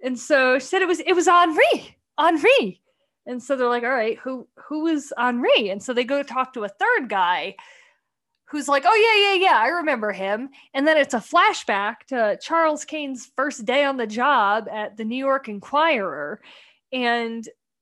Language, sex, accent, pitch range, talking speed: English, female, American, 230-320 Hz, 195 wpm